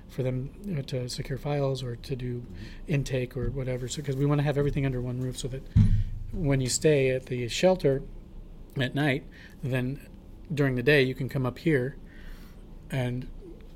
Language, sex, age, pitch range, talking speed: English, male, 40-59, 120-140 Hz, 175 wpm